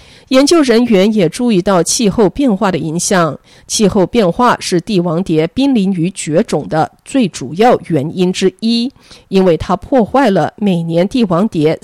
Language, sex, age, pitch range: Chinese, female, 50-69, 175-245 Hz